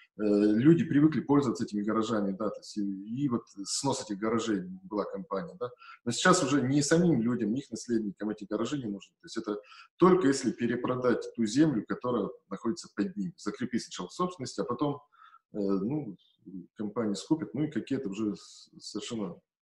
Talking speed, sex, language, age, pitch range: 170 wpm, male, Russian, 20-39, 110-155 Hz